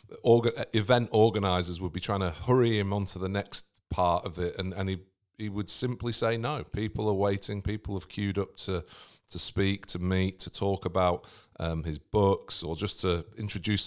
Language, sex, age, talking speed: English, male, 40-59, 195 wpm